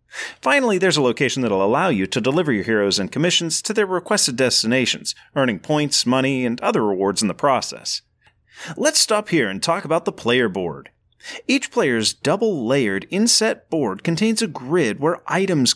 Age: 30-49